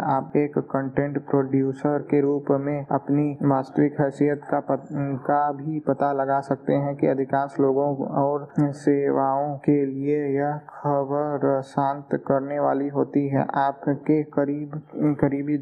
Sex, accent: male, native